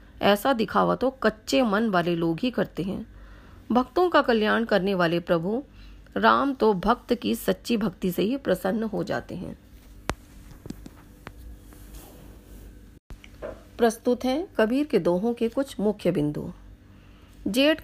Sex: female